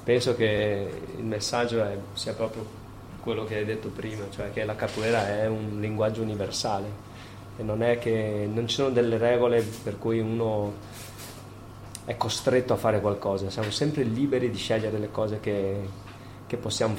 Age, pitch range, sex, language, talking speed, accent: 20-39, 105-125 Hz, male, Italian, 165 wpm, native